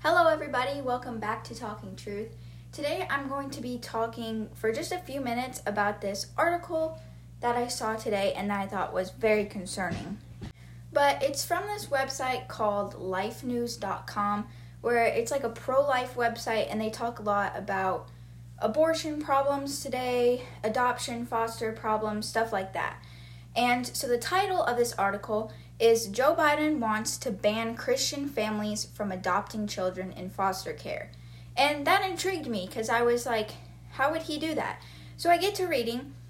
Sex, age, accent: female, 10-29, American